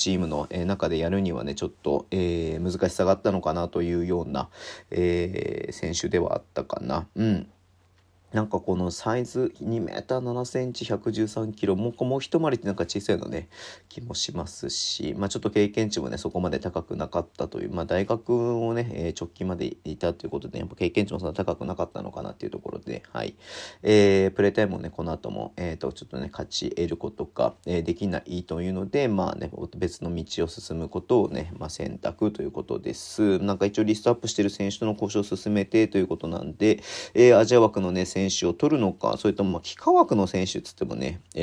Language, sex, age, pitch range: Japanese, male, 40-59, 90-110 Hz